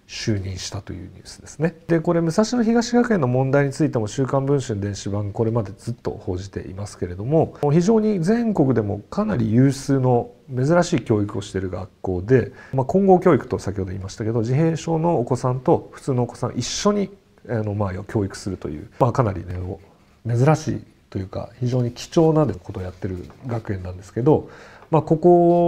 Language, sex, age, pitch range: Japanese, male, 40-59, 100-155 Hz